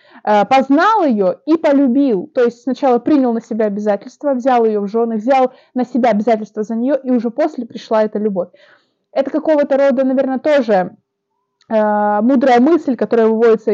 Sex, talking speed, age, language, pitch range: female, 155 wpm, 20-39, Russian, 215-260 Hz